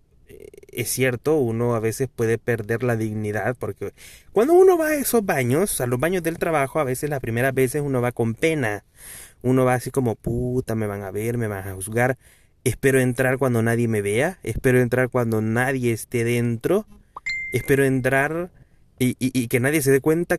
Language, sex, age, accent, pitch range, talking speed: Spanish, male, 30-49, Mexican, 120-150 Hz, 190 wpm